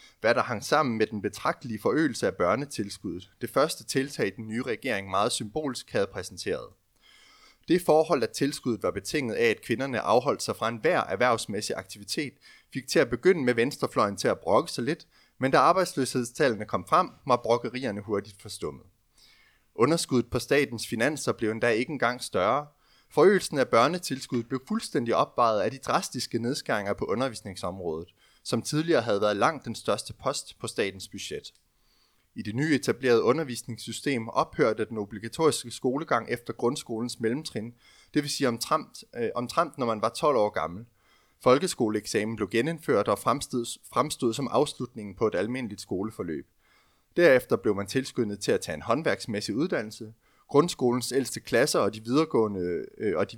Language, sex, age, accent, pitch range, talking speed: Danish, male, 30-49, native, 110-145 Hz, 155 wpm